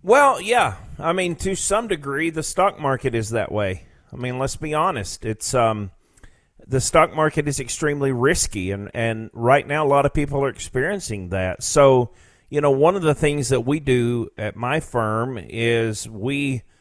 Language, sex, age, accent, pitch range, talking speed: English, male, 40-59, American, 110-140 Hz, 185 wpm